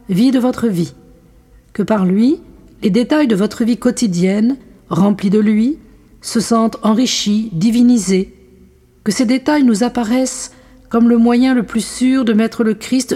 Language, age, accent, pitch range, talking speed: French, 50-69, French, 185-245 Hz, 160 wpm